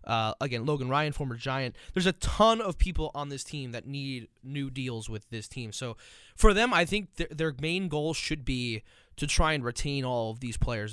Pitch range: 130-170 Hz